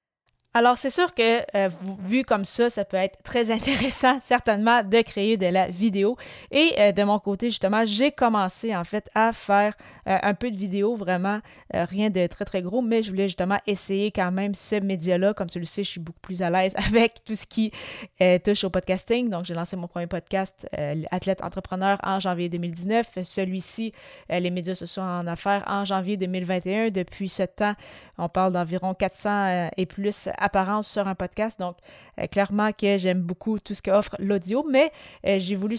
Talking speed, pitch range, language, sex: 200 wpm, 185-220 Hz, French, female